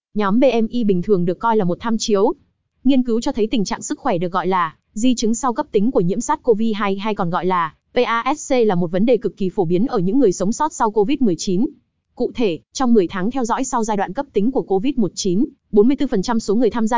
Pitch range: 195-245 Hz